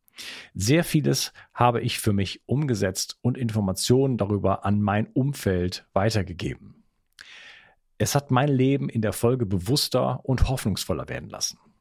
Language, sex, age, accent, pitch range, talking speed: German, male, 50-69, German, 100-130 Hz, 130 wpm